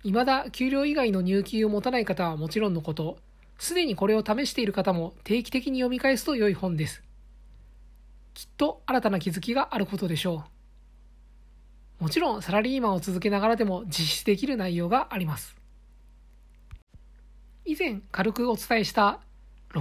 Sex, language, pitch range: male, Japanese, 155-245 Hz